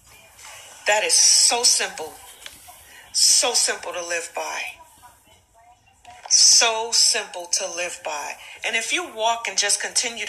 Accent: American